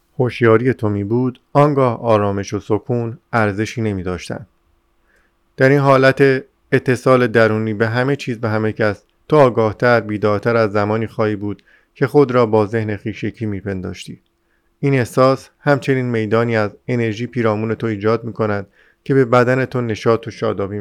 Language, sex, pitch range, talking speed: Persian, male, 110-130 Hz, 150 wpm